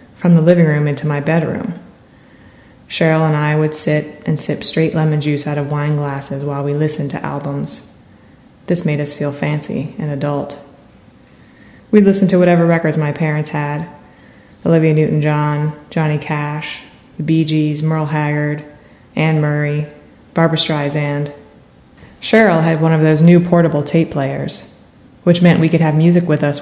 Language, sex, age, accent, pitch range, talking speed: English, female, 20-39, American, 145-160 Hz, 160 wpm